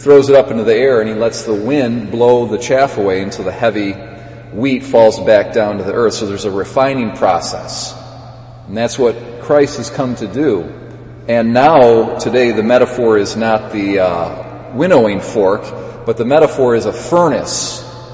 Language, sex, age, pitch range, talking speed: English, male, 40-59, 115-130 Hz, 180 wpm